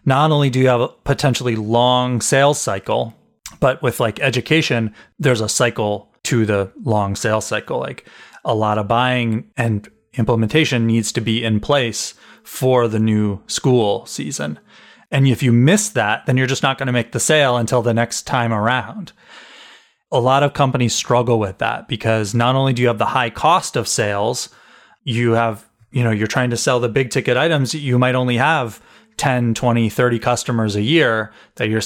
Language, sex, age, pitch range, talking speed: English, male, 30-49, 110-130 Hz, 190 wpm